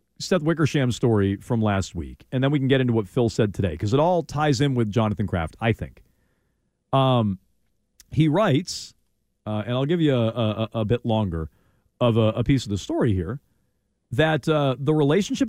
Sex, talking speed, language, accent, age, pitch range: male, 200 wpm, English, American, 40-59, 105-150 Hz